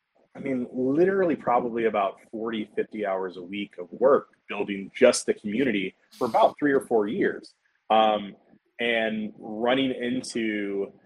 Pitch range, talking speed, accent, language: 110-140 Hz, 140 wpm, American, English